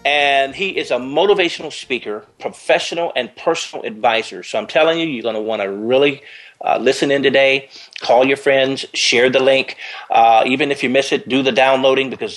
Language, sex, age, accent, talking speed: English, male, 40-59, American, 195 wpm